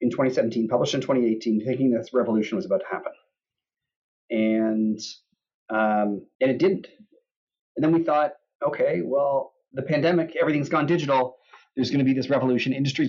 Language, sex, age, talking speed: English, male, 30-49, 160 wpm